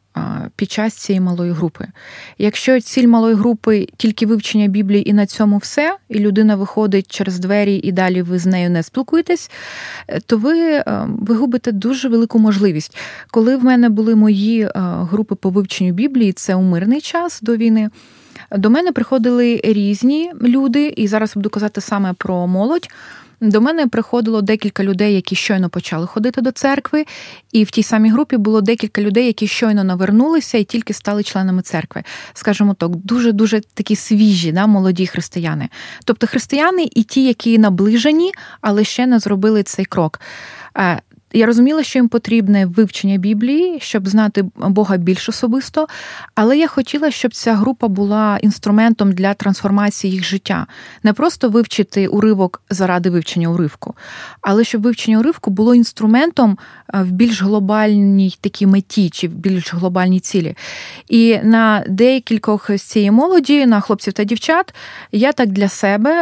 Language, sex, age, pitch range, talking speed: Ukrainian, female, 20-39, 195-240 Hz, 155 wpm